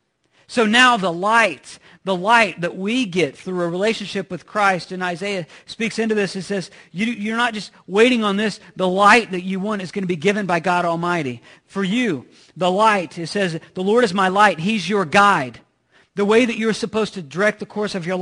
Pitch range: 180-220 Hz